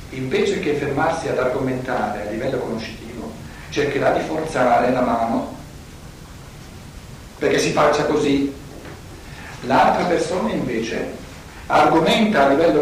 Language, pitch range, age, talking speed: Italian, 125-160 Hz, 60-79, 110 wpm